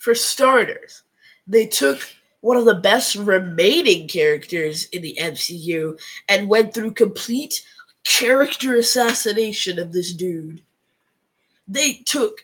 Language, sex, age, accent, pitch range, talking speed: English, female, 20-39, American, 220-290 Hz, 115 wpm